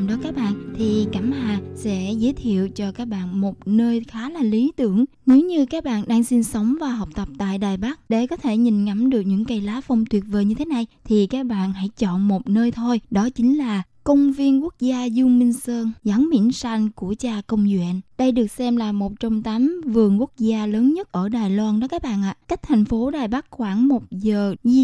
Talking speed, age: 240 wpm, 20-39